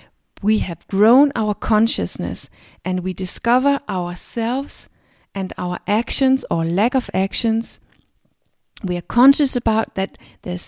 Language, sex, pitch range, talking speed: English, female, 190-235 Hz, 125 wpm